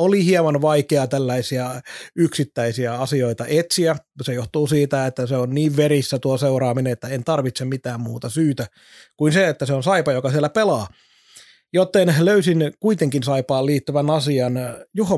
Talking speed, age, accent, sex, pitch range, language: 155 wpm, 30-49, native, male, 130-155 Hz, Finnish